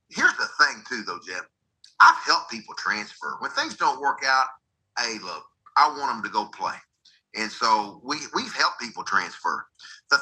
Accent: American